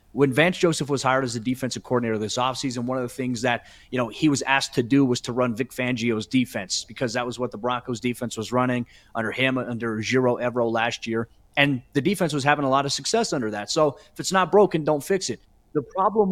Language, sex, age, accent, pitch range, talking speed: English, male, 30-49, American, 125-145 Hz, 245 wpm